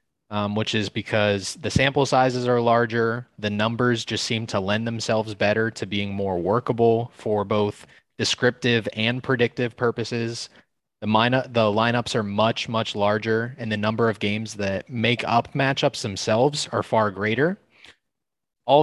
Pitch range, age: 105-125 Hz, 20-39